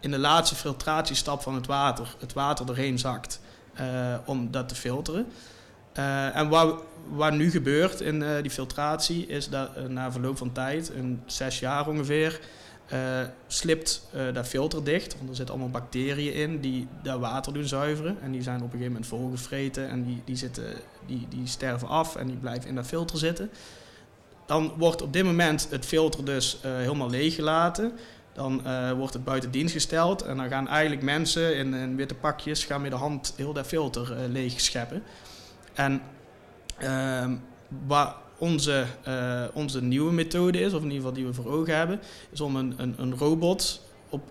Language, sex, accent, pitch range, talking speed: Dutch, male, Dutch, 130-155 Hz, 190 wpm